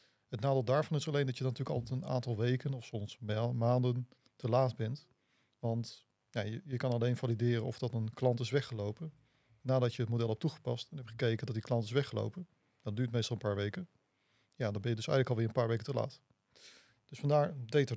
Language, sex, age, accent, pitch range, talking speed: Dutch, male, 40-59, Dutch, 115-135 Hz, 220 wpm